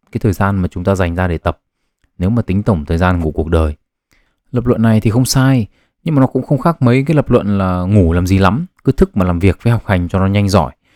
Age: 20-39